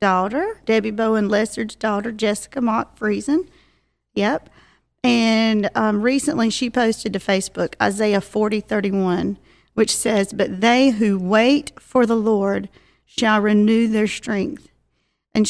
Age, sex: 40-59, female